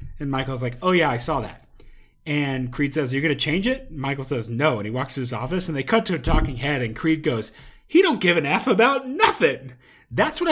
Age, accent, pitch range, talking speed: 30-49, American, 155-230 Hz, 250 wpm